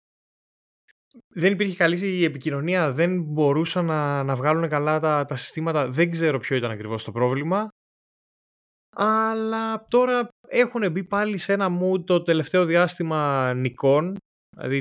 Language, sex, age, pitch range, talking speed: Greek, male, 20-39, 125-185 Hz, 140 wpm